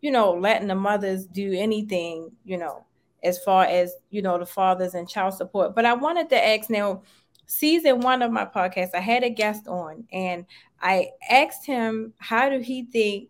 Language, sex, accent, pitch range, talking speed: English, female, American, 185-230 Hz, 195 wpm